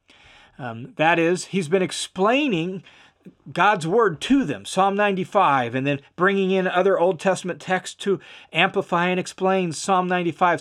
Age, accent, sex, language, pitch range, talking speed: 40-59, American, male, English, 155-210 Hz, 145 wpm